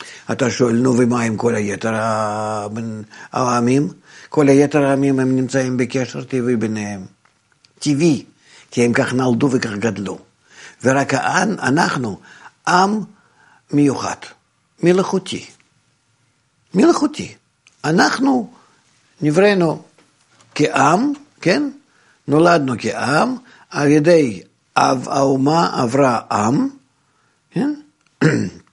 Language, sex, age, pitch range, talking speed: Hebrew, male, 60-79, 125-175 Hz, 90 wpm